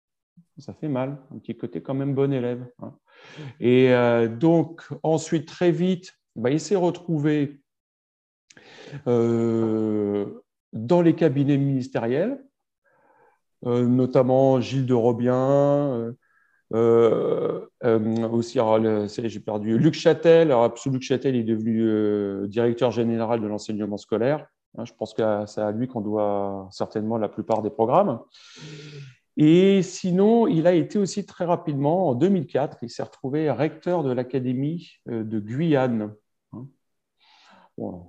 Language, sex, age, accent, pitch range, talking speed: French, male, 40-59, French, 110-155 Hz, 130 wpm